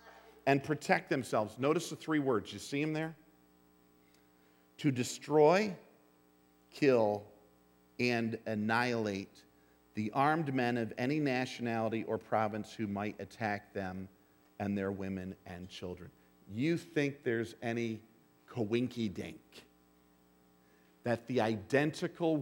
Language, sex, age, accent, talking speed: English, male, 50-69, American, 110 wpm